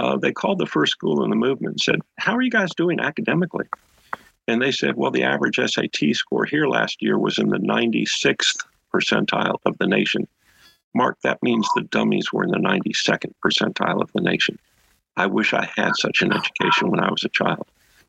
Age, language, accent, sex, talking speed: 50-69, English, American, male, 200 wpm